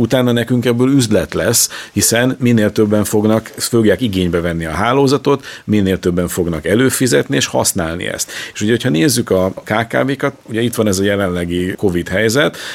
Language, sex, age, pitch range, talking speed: Hungarian, male, 50-69, 90-115 Hz, 155 wpm